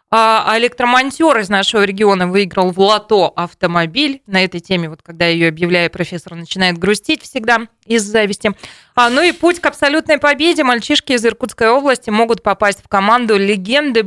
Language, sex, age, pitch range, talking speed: Russian, female, 20-39, 185-235 Hz, 160 wpm